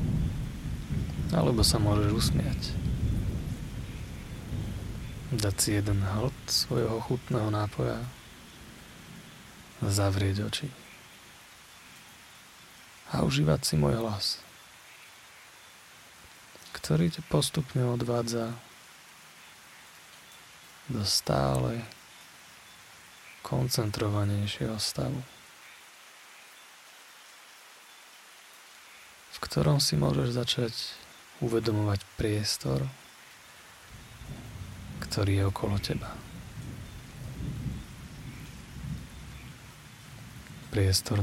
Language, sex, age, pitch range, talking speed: Slovak, male, 30-49, 100-120 Hz, 55 wpm